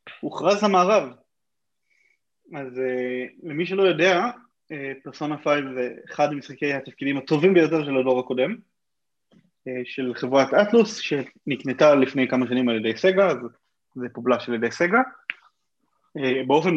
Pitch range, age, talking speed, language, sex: 130-180 Hz, 20-39, 120 wpm, Hebrew, male